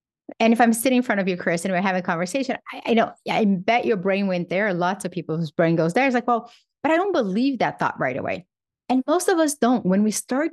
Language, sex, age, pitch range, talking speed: English, female, 30-49, 180-245 Hz, 280 wpm